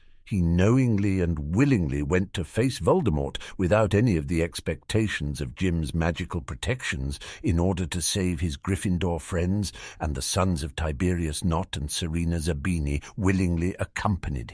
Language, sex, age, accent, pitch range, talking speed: English, male, 60-79, British, 80-95 Hz, 145 wpm